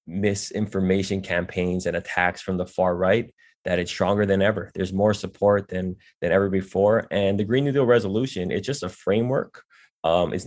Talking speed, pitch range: 185 wpm, 90-100 Hz